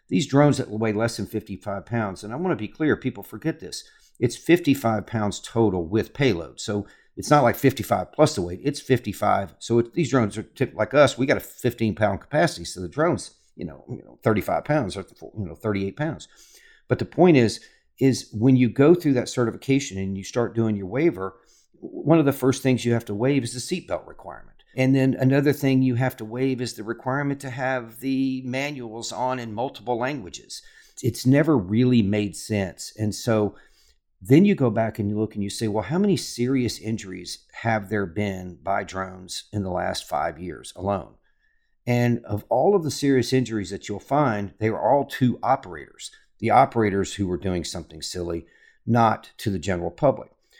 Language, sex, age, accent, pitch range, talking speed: English, male, 50-69, American, 100-135 Hz, 200 wpm